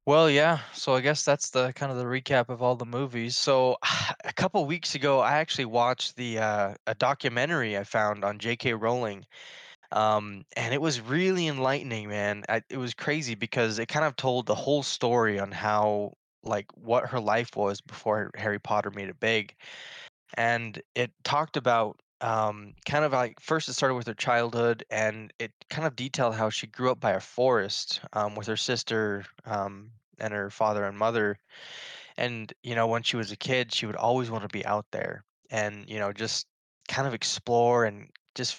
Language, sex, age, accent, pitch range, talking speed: English, male, 10-29, American, 105-125 Hz, 200 wpm